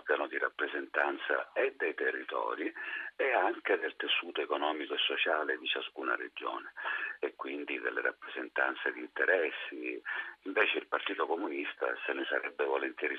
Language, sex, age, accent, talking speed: Italian, male, 40-59, native, 130 wpm